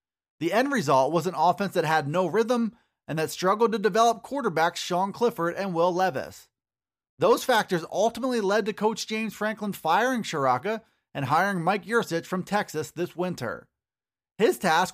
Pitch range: 170-220 Hz